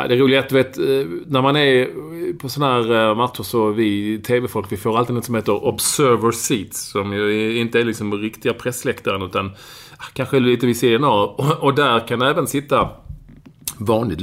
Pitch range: 95-135 Hz